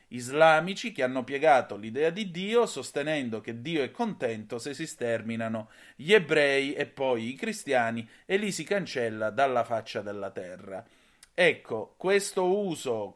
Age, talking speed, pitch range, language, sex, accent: 30-49, 145 wpm, 115-155 Hz, Italian, male, native